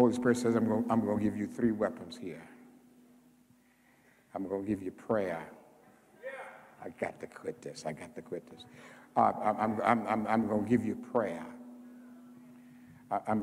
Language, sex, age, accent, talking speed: English, male, 60-79, American, 180 wpm